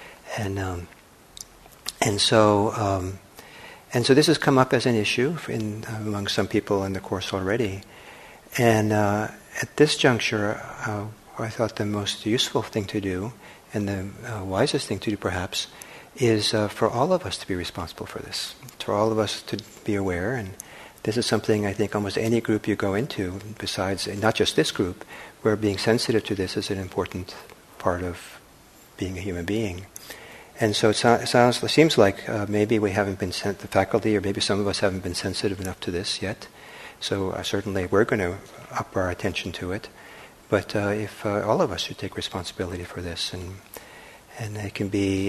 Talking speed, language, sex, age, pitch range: 200 wpm, English, male, 60-79, 95-110 Hz